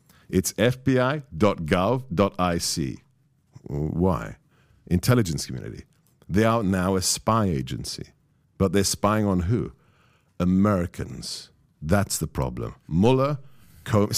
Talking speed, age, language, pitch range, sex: 95 wpm, 50-69, English, 95-140 Hz, male